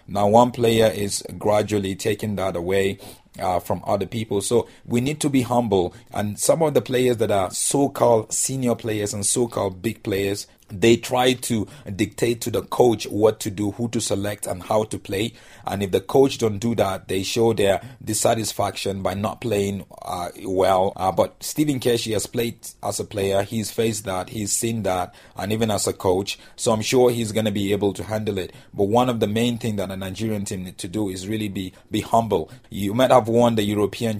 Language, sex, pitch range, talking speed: English, male, 100-120 Hz, 210 wpm